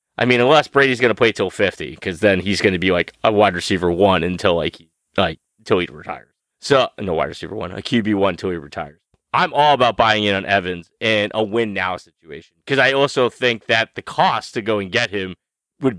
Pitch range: 105-135 Hz